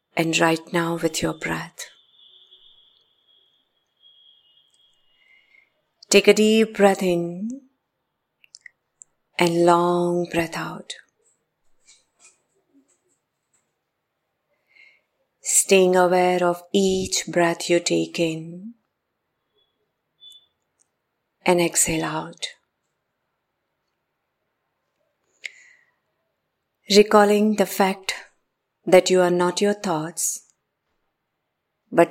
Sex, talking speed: female, 65 wpm